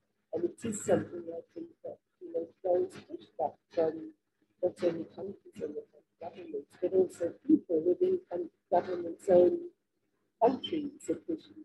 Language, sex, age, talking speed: English, female, 50-69, 130 wpm